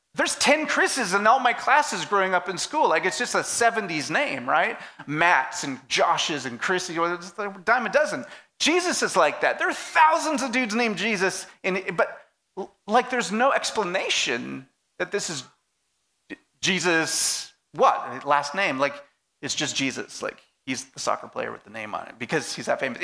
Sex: male